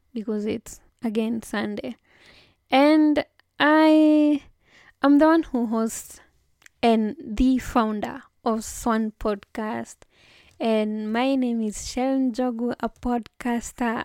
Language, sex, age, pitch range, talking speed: English, female, 10-29, 225-250 Hz, 105 wpm